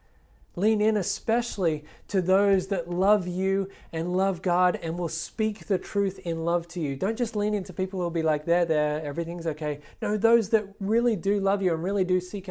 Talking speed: 210 wpm